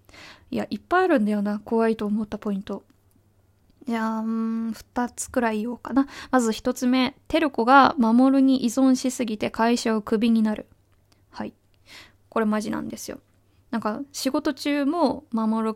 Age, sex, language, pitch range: 20-39, female, Japanese, 205-260 Hz